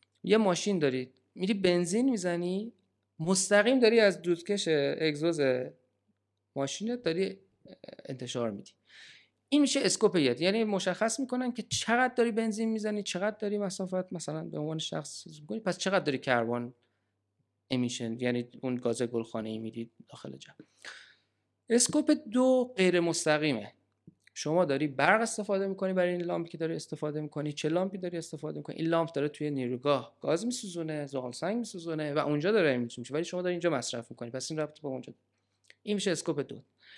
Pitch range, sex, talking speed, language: 135-195 Hz, male, 155 wpm, Persian